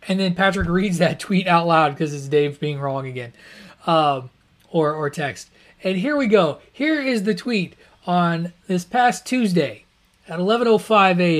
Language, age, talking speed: English, 30-49, 165 wpm